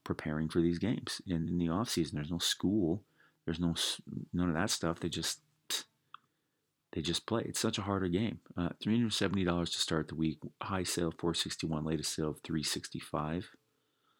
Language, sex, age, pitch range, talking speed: English, male, 30-49, 80-120 Hz, 175 wpm